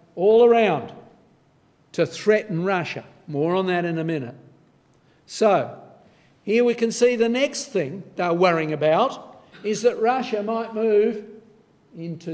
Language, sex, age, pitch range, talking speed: English, male, 50-69, 160-225 Hz, 135 wpm